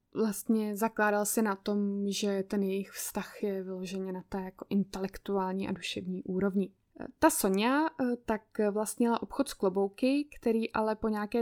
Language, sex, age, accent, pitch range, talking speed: Czech, female, 20-39, native, 205-230 Hz, 150 wpm